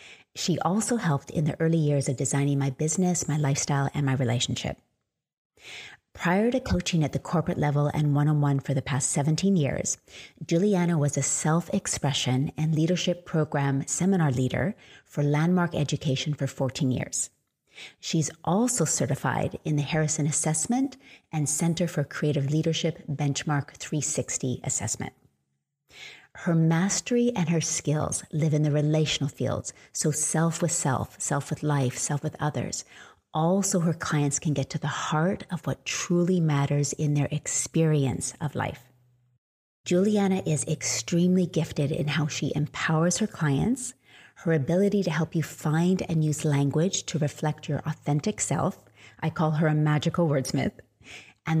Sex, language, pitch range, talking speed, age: female, English, 140-170 Hz, 150 wpm, 30-49